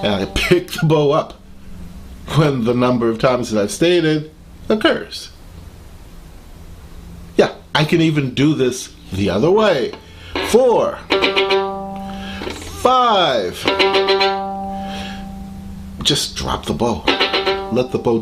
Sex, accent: male, American